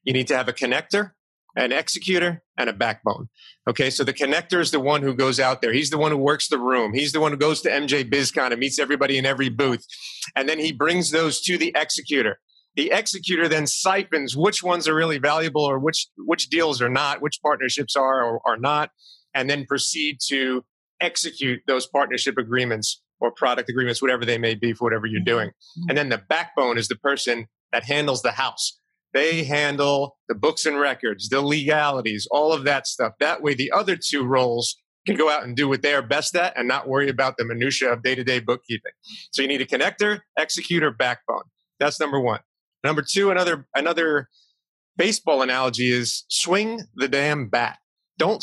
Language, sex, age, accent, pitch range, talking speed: English, male, 30-49, American, 130-160 Hz, 200 wpm